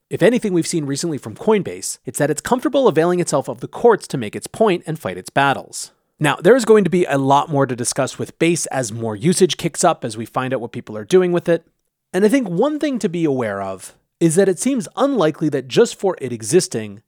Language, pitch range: English, 130-185 Hz